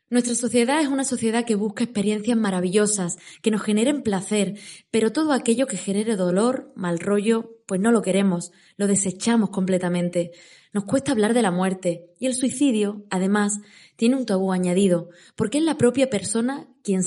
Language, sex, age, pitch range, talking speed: Spanish, female, 20-39, 190-235 Hz, 170 wpm